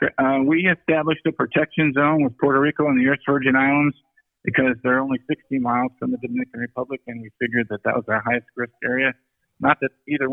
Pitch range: 125-140 Hz